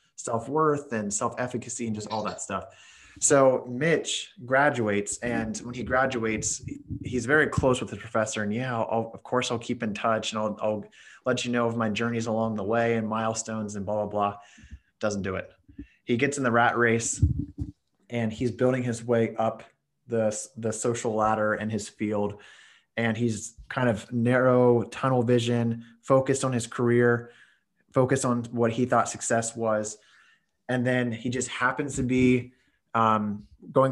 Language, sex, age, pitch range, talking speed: English, male, 20-39, 110-125 Hz, 170 wpm